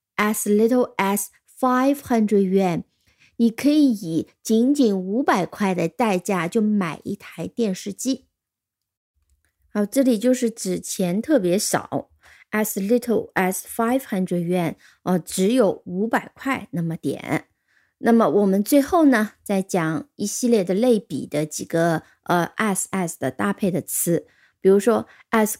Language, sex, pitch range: Chinese, female, 185-250 Hz